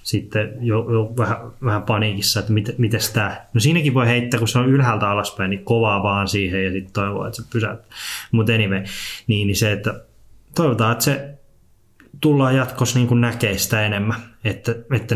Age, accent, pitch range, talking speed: 20-39, native, 105-125 Hz, 170 wpm